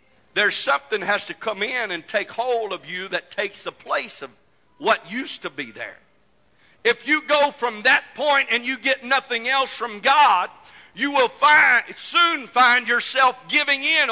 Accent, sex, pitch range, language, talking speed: American, male, 210-300 Hz, English, 180 wpm